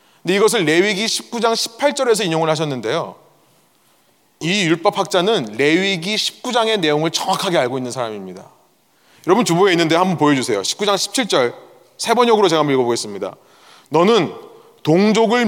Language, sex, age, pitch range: Korean, male, 30-49, 155-210 Hz